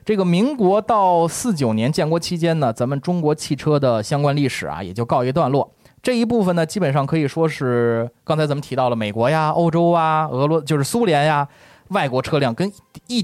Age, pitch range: 20-39, 125-180 Hz